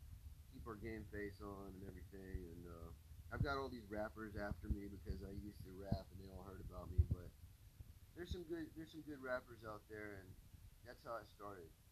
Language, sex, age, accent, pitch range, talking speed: English, male, 30-49, American, 90-110 Hz, 205 wpm